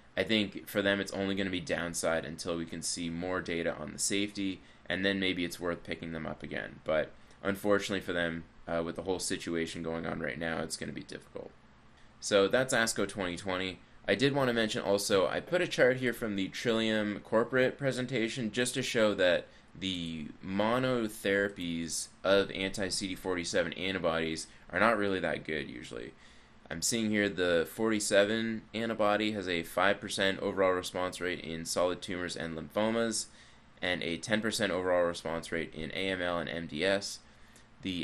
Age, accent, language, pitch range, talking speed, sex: 20-39, American, English, 85-105 Hz, 170 wpm, male